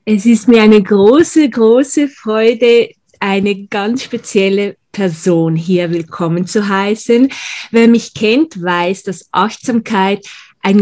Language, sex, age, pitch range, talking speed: German, female, 20-39, 185-230 Hz, 120 wpm